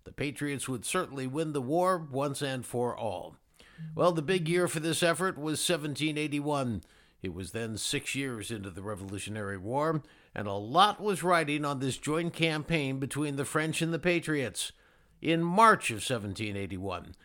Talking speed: 165 wpm